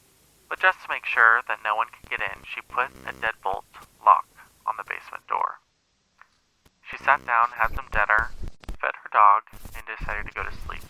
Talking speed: 195 wpm